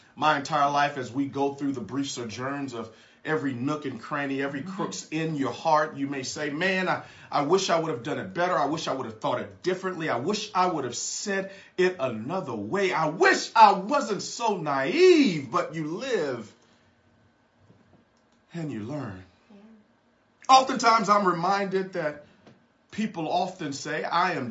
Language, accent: English, American